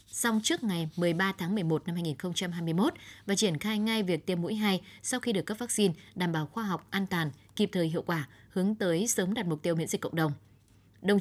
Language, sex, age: Vietnamese, female, 20-39